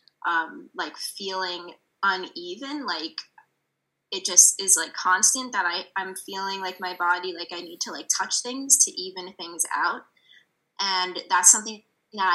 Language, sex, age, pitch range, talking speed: English, female, 20-39, 175-220 Hz, 150 wpm